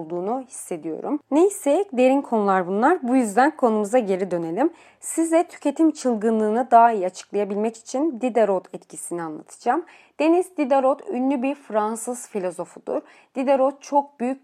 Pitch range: 215-280 Hz